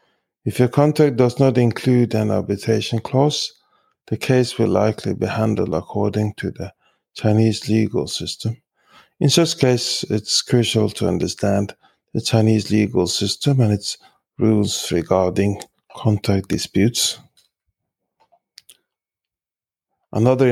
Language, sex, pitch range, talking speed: English, male, 105-125 Hz, 115 wpm